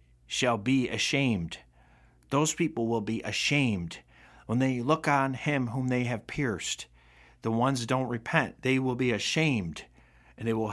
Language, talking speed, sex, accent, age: English, 155 wpm, male, American, 50-69